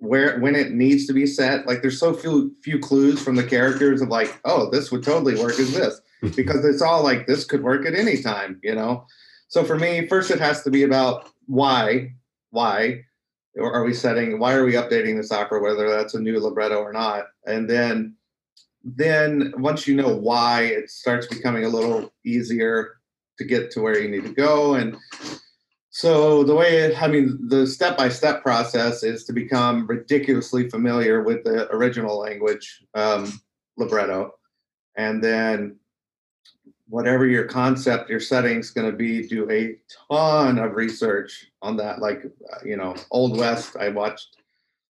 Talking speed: 175 wpm